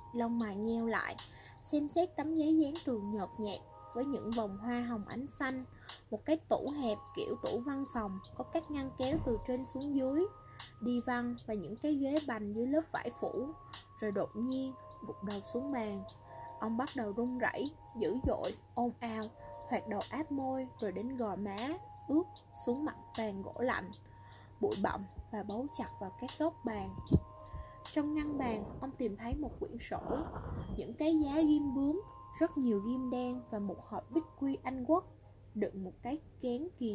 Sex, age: female, 10-29